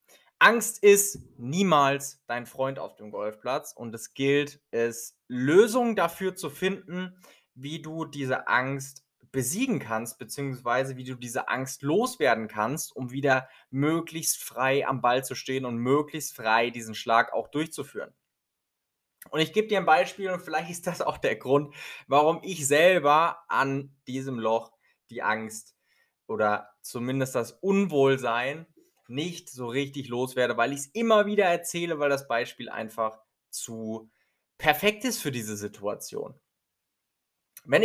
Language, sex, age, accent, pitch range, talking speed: German, male, 20-39, German, 120-155 Hz, 145 wpm